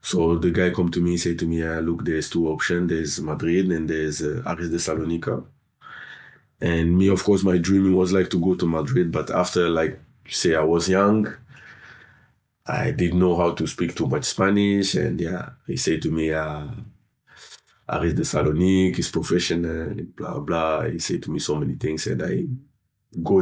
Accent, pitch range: French, 80-95 Hz